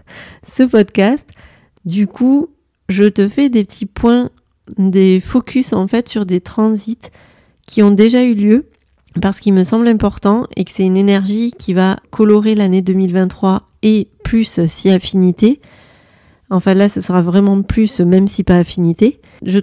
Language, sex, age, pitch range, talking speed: French, female, 30-49, 190-225 Hz, 160 wpm